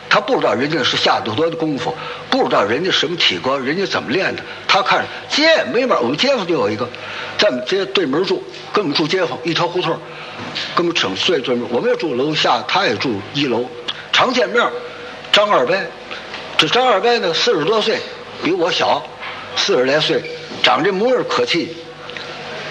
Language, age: Chinese, 60-79